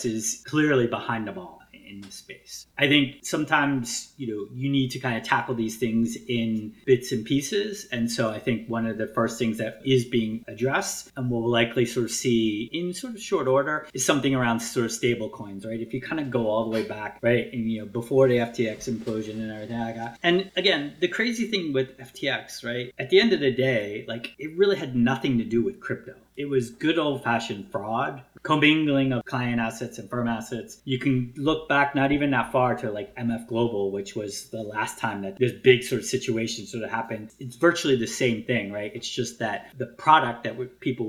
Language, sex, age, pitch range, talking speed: English, male, 30-49, 115-135 Hz, 225 wpm